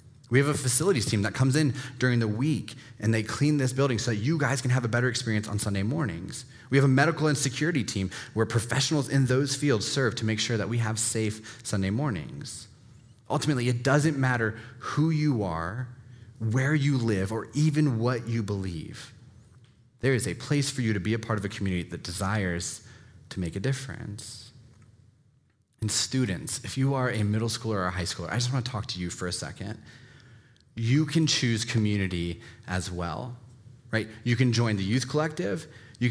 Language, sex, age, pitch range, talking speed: English, male, 30-49, 110-135 Hz, 195 wpm